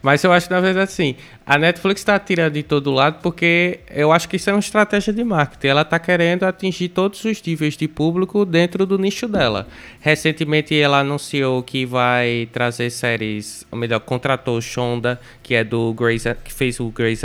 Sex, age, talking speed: male, 20-39, 195 wpm